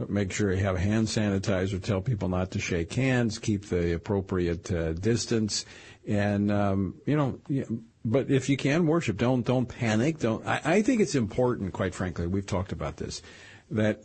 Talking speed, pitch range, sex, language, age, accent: 180 wpm, 100-125 Hz, male, English, 50-69, American